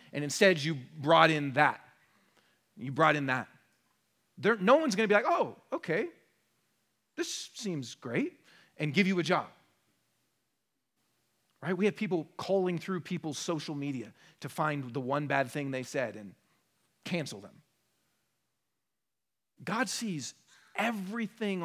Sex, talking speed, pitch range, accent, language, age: male, 135 wpm, 150-230 Hz, American, English, 40-59